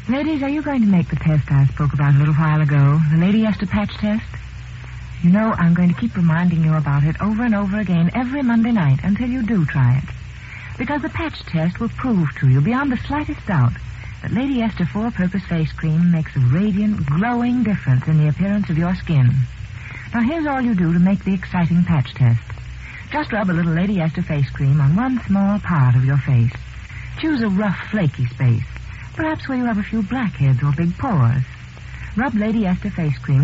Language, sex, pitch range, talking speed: English, female, 140-220 Hz, 210 wpm